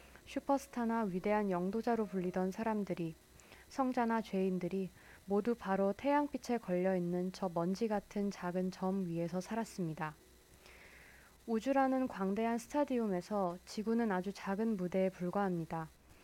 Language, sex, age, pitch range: Korean, female, 20-39, 185-230 Hz